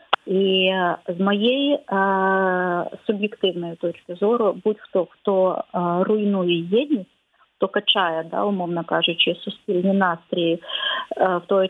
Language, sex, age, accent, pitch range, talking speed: Ukrainian, female, 30-49, native, 180-210 Hz, 105 wpm